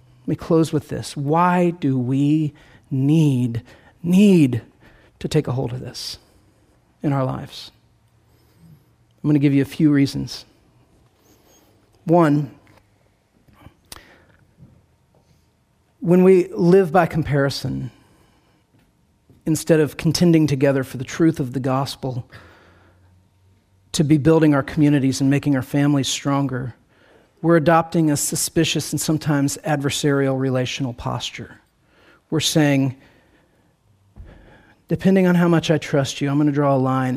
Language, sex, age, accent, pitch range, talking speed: English, male, 40-59, American, 125-155 Hz, 120 wpm